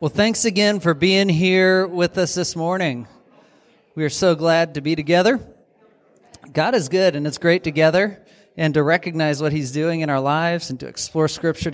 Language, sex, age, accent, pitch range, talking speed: English, male, 40-59, American, 140-175 Hz, 190 wpm